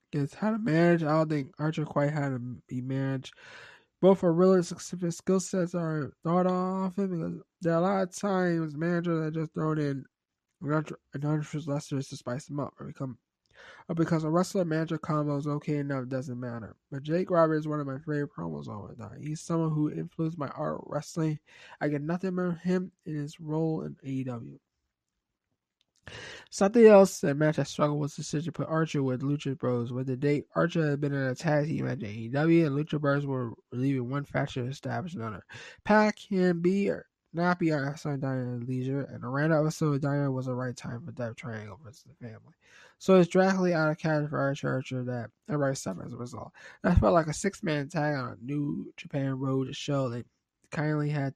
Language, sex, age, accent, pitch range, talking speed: English, male, 20-39, American, 130-165 Hz, 210 wpm